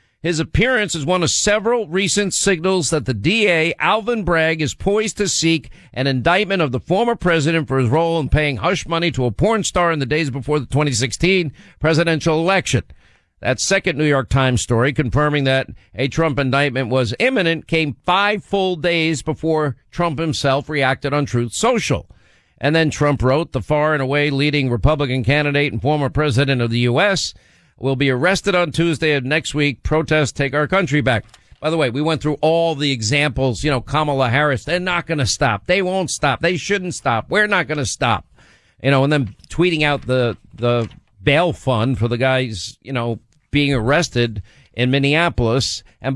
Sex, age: male, 50-69